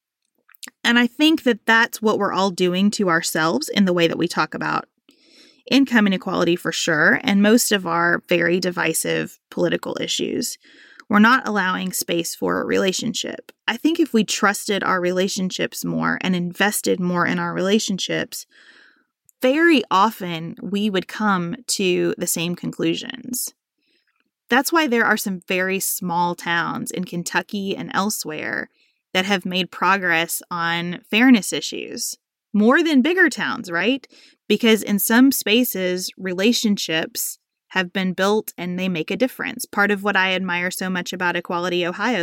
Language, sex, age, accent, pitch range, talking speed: English, female, 20-39, American, 180-235 Hz, 150 wpm